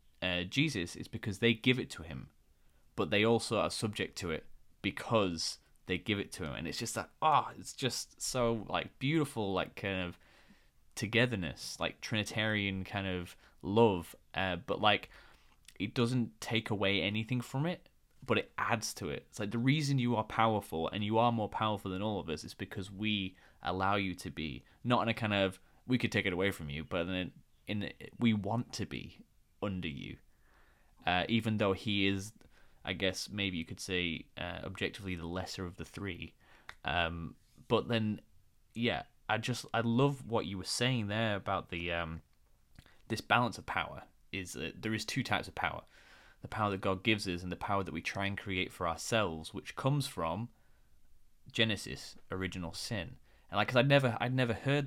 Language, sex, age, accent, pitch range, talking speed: English, male, 10-29, British, 90-115 Hz, 195 wpm